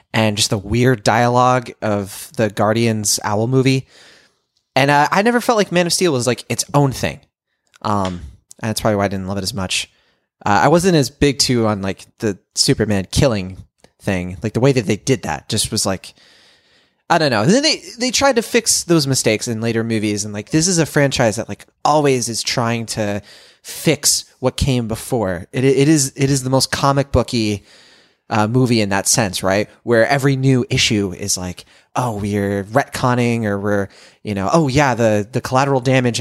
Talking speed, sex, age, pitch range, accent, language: 200 wpm, male, 20-39, 105-135 Hz, American, English